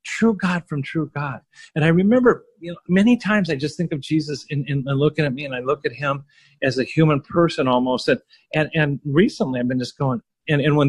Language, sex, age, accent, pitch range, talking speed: English, male, 40-59, American, 145-180 Hz, 250 wpm